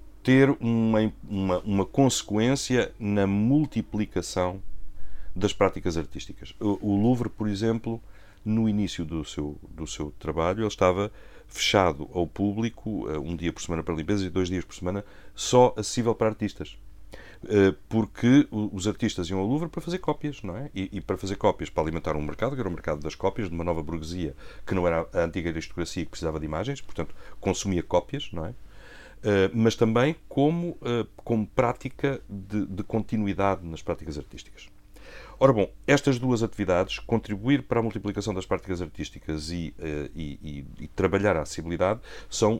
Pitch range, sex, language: 85-115 Hz, male, Portuguese